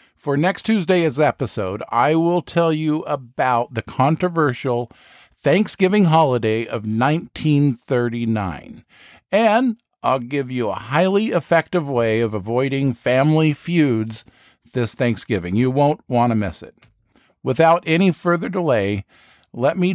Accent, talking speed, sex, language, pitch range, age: American, 125 wpm, male, English, 110-155 Hz, 50-69